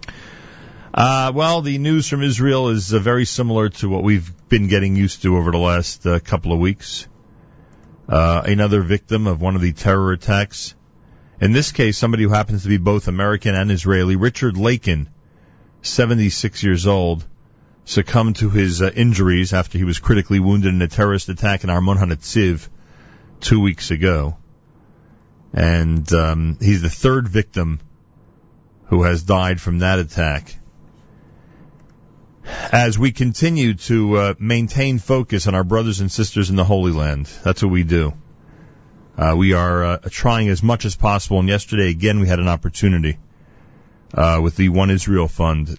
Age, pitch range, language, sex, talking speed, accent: 40-59, 85-110 Hz, English, male, 165 wpm, American